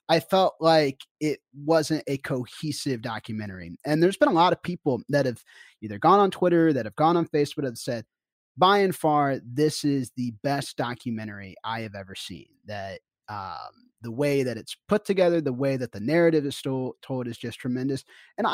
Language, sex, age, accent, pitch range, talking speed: English, male, 30-49, American, 115-155 Hz, 190 wpm